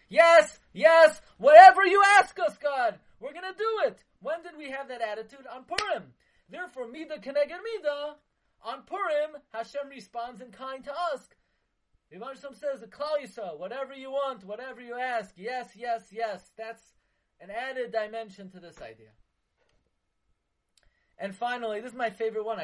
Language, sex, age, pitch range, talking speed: English, male, 30-49, 165-255 Hz, 155 wpm